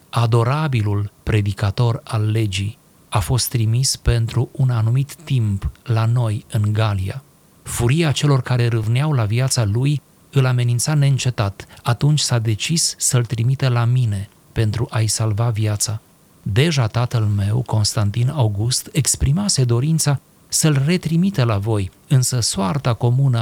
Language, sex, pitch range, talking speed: Romanian, male, 110-135 Hz, 130 wpm